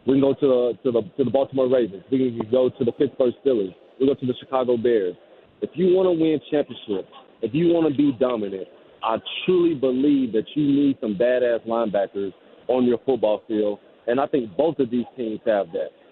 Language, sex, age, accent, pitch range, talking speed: English, male, 40-59, American, 120-140 Hz, 220 wpm